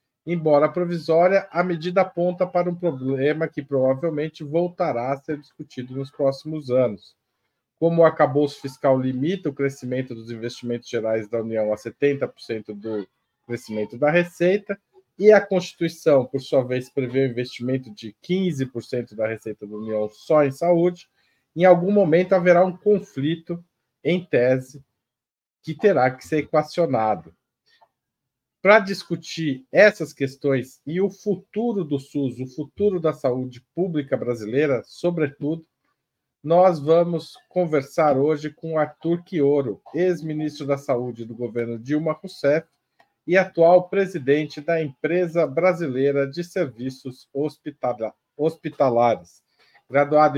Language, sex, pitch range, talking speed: Portuguese, male, 125-170 Hz, 125 wpm